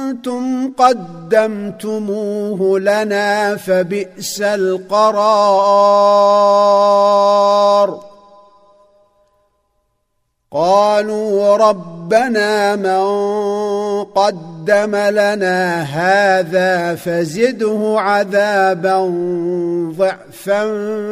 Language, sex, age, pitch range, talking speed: Arabic, male, 50-69, 185-205 Hz, 35 wpm